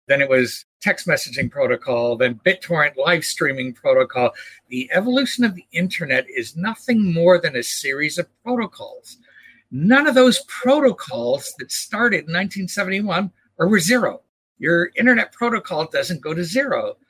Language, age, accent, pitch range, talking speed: English, 60-79, American, 185-255 Hz, 145 wpm